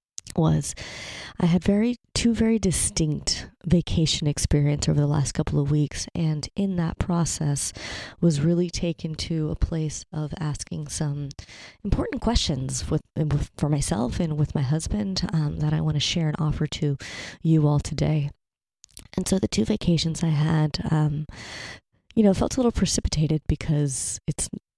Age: 30-49